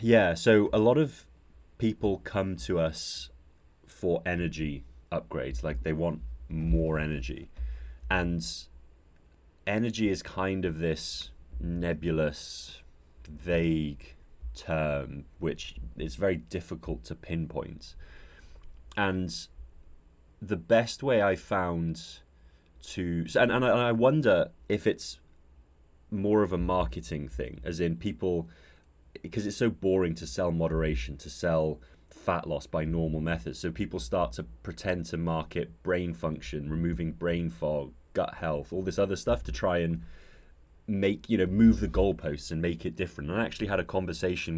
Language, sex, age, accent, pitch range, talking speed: English, male, 30-49, British, 75-90 Hz, 140 wpm